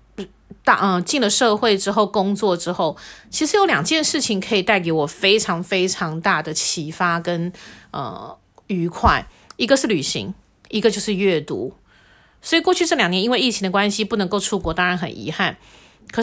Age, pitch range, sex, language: 30-49, 170-215 Hz, female, Chinese